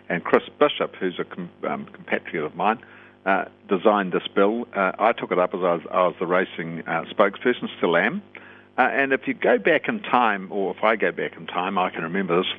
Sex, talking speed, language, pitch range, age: male, 230 wpm, English, 95-110 Hz, 60-79